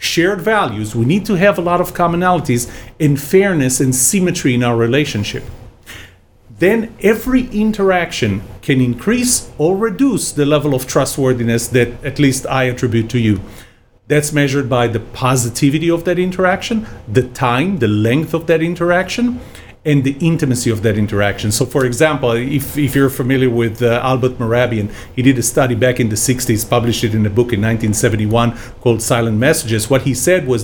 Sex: male